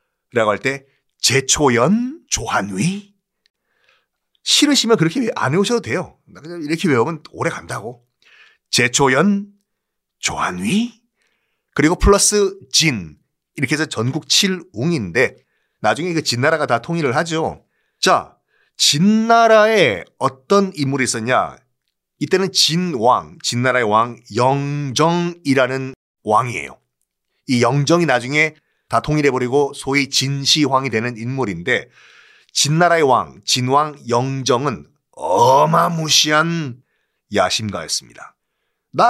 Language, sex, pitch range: Korean, male, 130-200 Hz